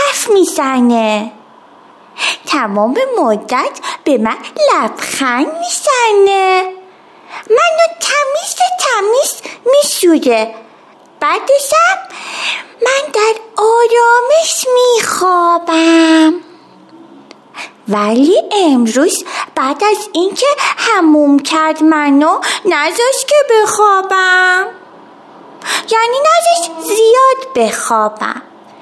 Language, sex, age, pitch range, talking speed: Persian, female, 30-49, 295-405 Hz, 65 wpm